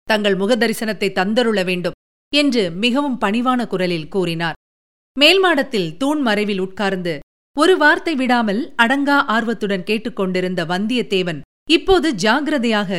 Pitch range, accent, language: 200-280 Hz, native, Tamil